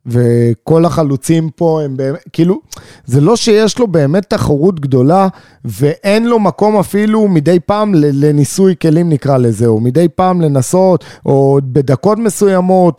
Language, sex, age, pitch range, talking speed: Hebrew, male, 30-49, 140-215 Hz, 140 wpm